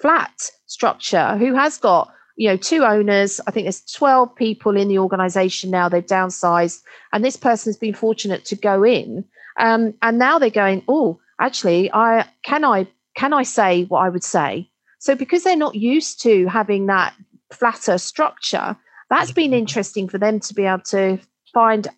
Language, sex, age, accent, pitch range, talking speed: English, female, 40-59, British, 190-245 Hz, 180 wpm